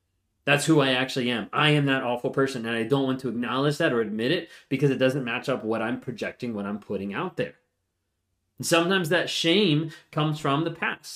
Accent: American